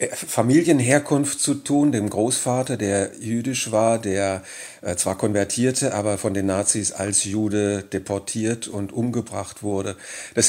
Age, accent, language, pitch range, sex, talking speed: 40-59, German, German, 100-120 Hz, male, 125 wpm